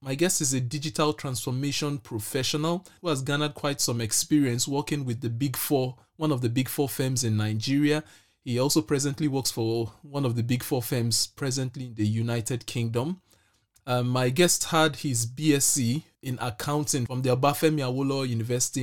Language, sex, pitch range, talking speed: English, male, 115-145 Hz, 175 wpm